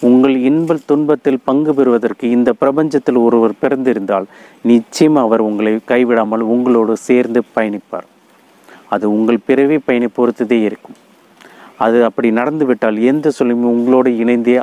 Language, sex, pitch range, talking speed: Tamil, male, 115-130 Hz, 120 wpm